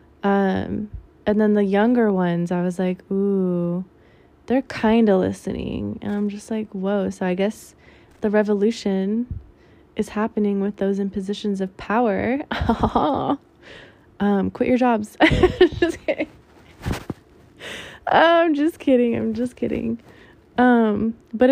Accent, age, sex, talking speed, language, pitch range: American, 20-39, female, 125 wpm, English, 190-225 Hz